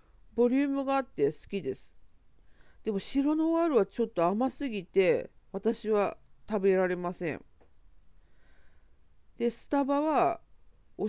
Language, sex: Japanese, female